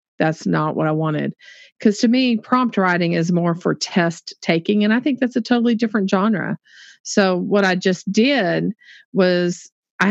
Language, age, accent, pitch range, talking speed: English, 40-59, American, 170-220 Hz, 180 wpm